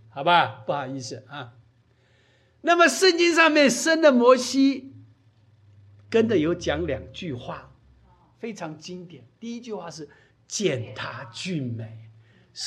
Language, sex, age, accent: Chinese, male, 60-79, native